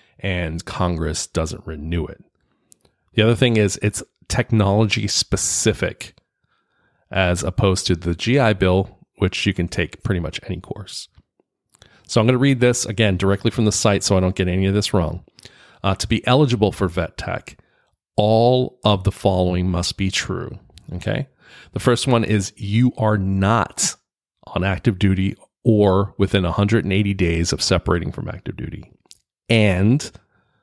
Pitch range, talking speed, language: 95-115 Hz, 155 wpm, English